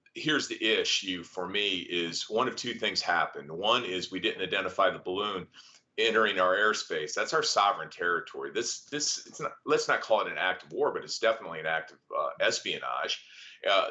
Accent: American